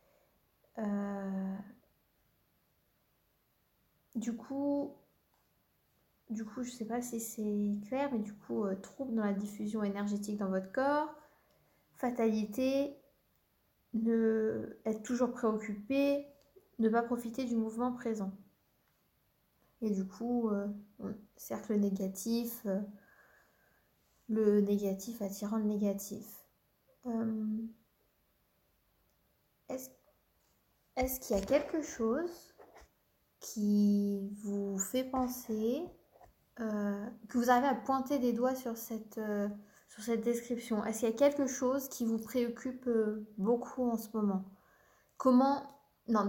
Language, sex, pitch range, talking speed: French, female, 210-260 Hz, 115 wpm